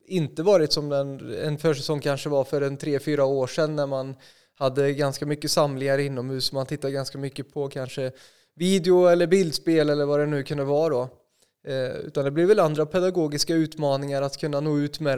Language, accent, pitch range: Swedish, native, 140-160 Hz